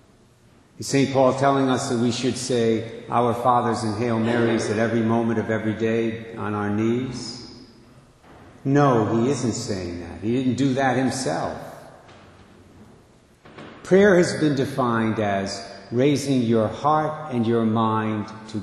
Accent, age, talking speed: American, 60-79, 145 wpm